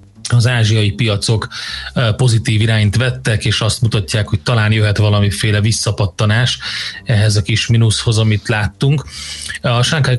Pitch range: 105-125 Hz